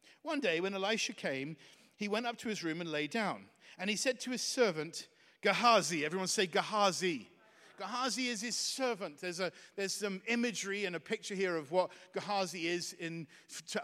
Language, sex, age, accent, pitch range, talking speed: English, male, 50-69, British, 180-240 Hz, 185 wpm